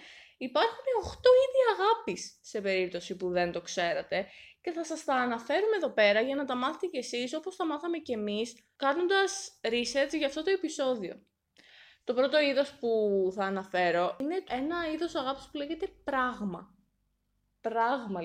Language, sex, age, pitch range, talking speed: Greek, female, 20-39, 200-295 Hz, 160 wpm